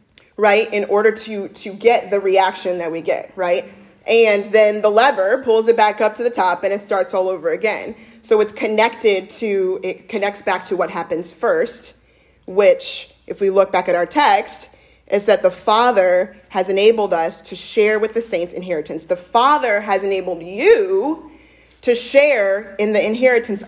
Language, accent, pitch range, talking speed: English, American, 185-230 Hz, 180 wpm